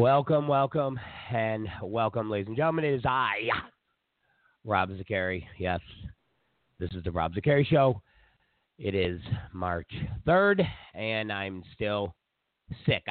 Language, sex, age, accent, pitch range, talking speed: English, male, 40-59, American, 100-145 Hz, 125 wpm